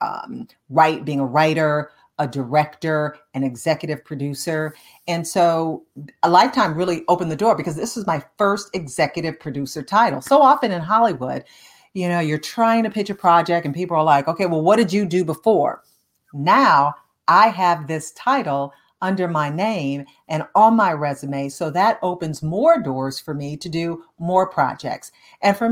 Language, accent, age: English, American, 40-59